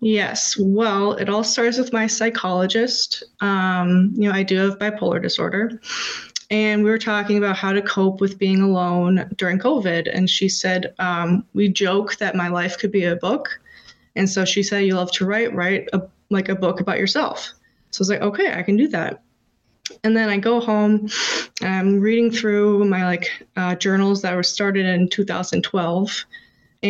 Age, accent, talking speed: 20-39, American, 185 wpm